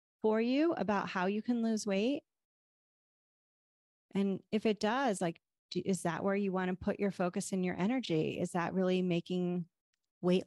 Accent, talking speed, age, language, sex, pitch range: American, 170 wpm, 30-49, English, female, 175-215 Hz